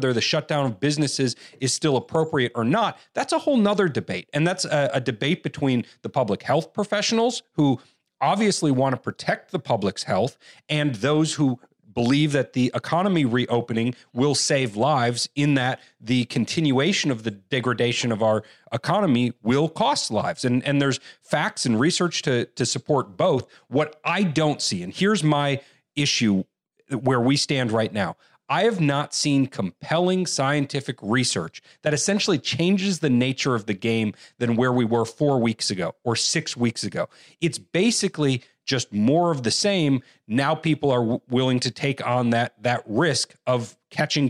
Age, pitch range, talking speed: 40-59, 120-155 Hz, 170 wpm